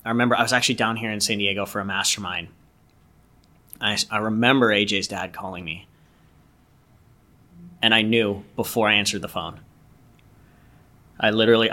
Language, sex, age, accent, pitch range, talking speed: English, male, 30-49, American, 95-115 Hz, 155 wpm